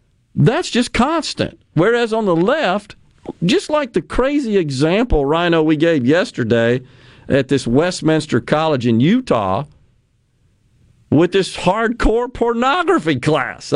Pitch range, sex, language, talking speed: 140-210 Hz, male, English, 120 wpm